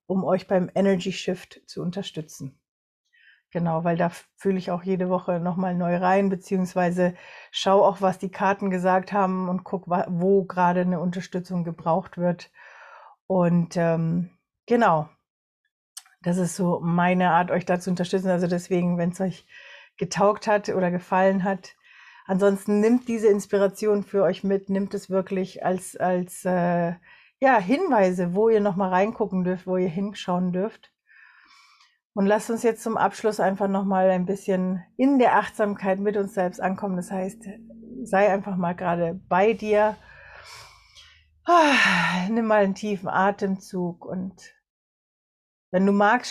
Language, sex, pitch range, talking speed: German, female, 180-200 Hz, 150 wpm